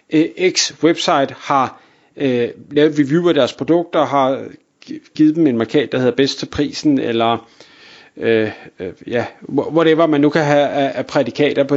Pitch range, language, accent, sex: 145-200 Hz, Danish, native, male